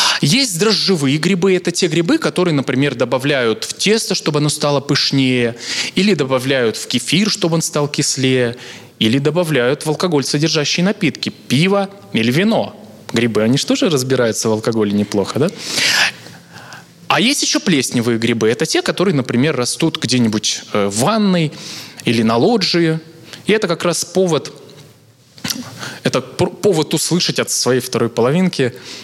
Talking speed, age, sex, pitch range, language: 145 wpm, 20-39, male, 125-185 Hz, Russian